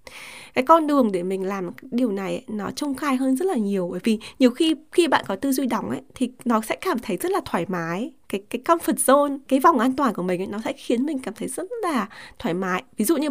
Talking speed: 265 wpm